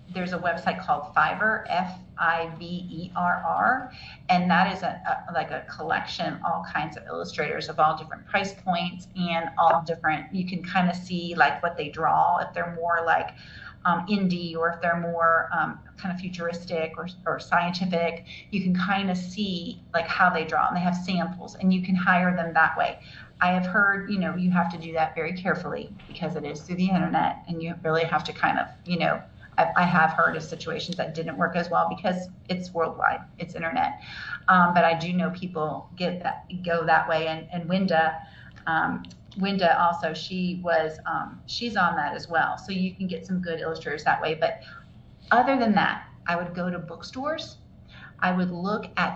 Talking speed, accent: 200 wpm, American